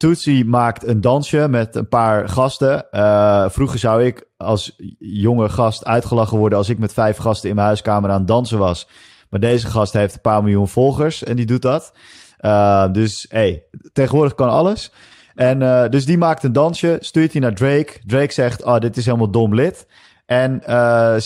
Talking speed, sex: 190 wpm, male